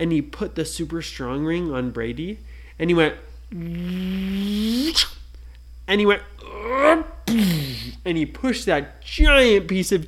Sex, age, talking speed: male, 20-39, 125 wpm